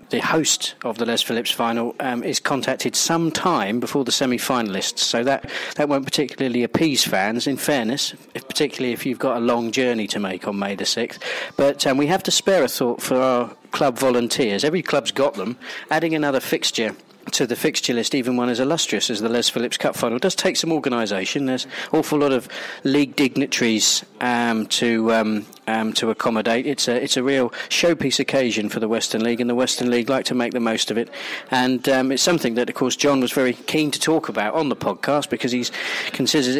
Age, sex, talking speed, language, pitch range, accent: 40-59, male, 215 wpm, English, 115-135 Hz, British